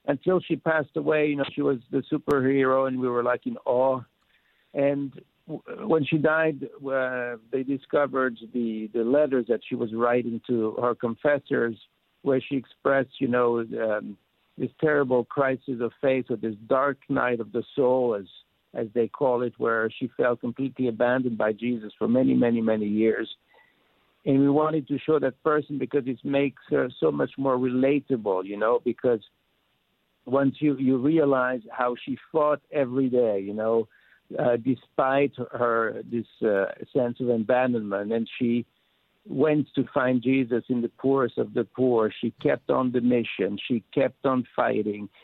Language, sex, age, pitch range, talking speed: English, male, 60-79, 120-140 Hz, 170 wpm